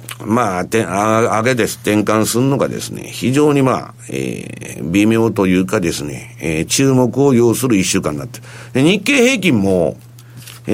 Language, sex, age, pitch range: Japanese, male, 50-69, 100-155 Hz